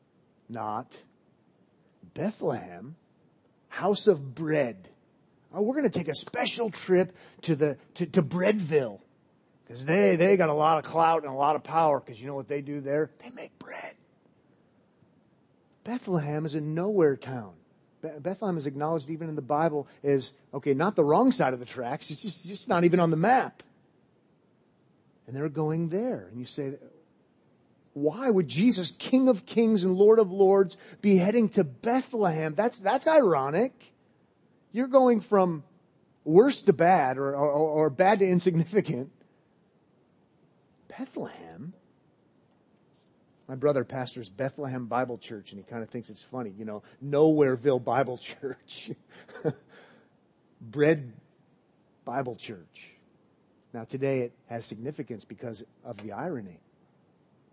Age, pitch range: 40-59, 135-195 Hz